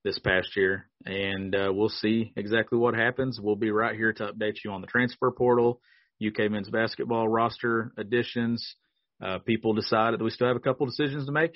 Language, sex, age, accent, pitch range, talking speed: English, male, 40-59, American, 105-120 Hz, 195 wpm